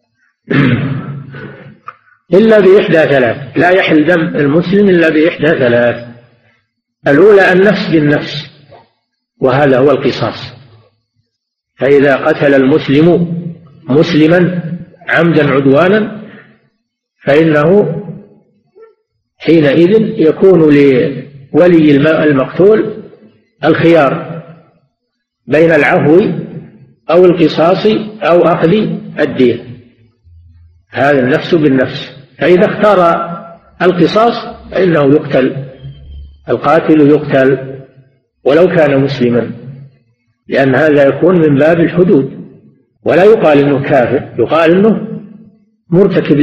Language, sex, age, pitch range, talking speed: Arabic, male, 50-69, 135-180 Hz, 80 wpm